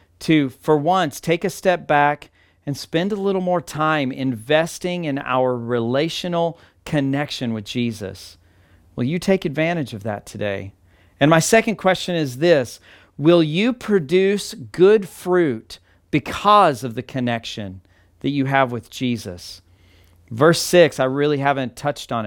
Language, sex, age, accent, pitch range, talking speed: English, male, 40-59, American, 110-160 Hz, 145 wpm